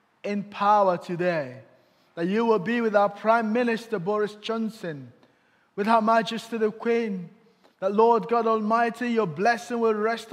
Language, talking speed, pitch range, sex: English, 150 wpm, 185-225 Hz, male